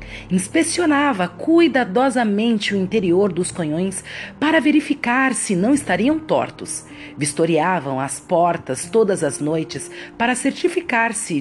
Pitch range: 165-265 Hz